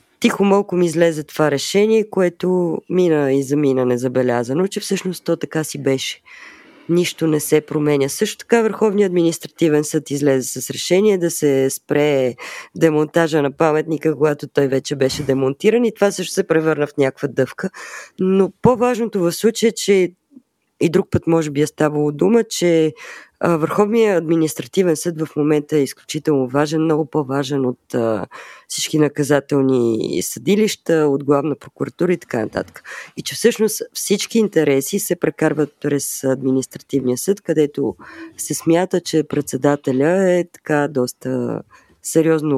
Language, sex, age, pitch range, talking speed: Bulgarian, female, 20-39, 140-180 Hz, 140 wpm